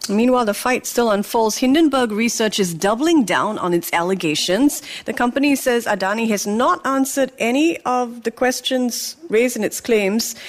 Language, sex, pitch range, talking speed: English, female, 180-245 Hz, 160 wpm